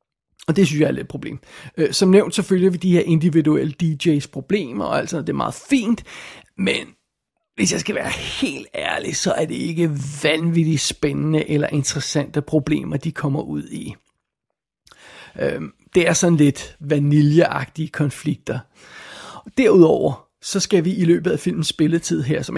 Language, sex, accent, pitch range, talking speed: Danish, male, native, 150-185 Hz, 160 wpm